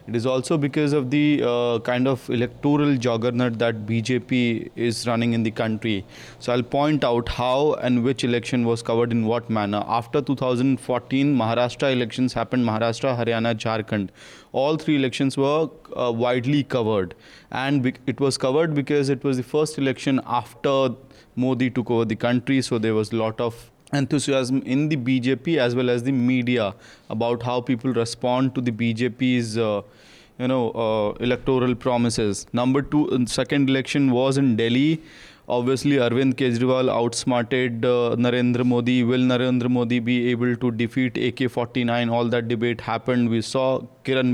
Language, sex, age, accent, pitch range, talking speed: English, male, 20-39, Indian, 120-130 Hz, 160 wpm